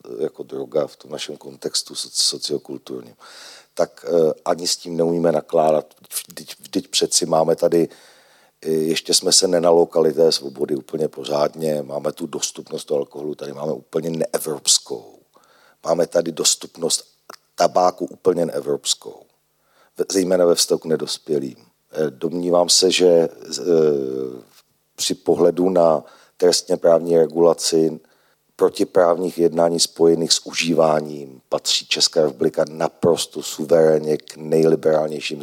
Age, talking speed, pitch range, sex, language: 50-69, 115 wpm, 80-95 Hz, male, Slovak